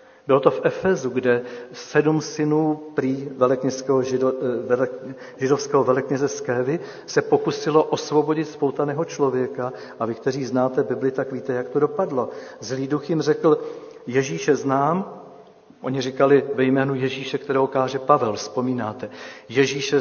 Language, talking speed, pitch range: Czech, 130 wpm, 125-150 Hz